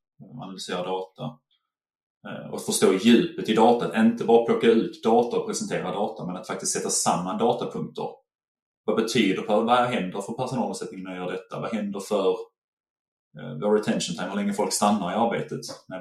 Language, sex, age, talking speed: Swedish, male, 20-39, 170 wpm